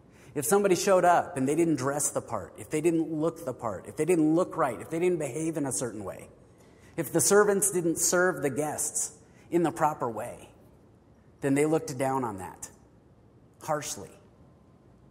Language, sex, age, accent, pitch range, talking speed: English, male, 30-49, American, 130-175 Hz, 185 wpm